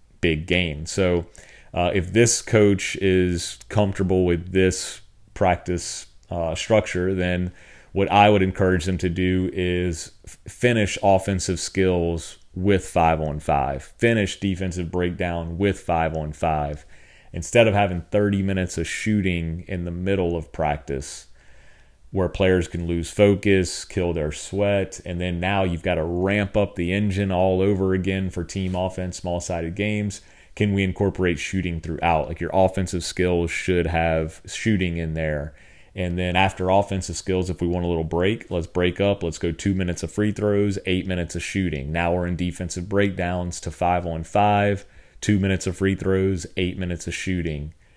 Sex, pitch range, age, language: male, 85-95 Hz, 30-49, English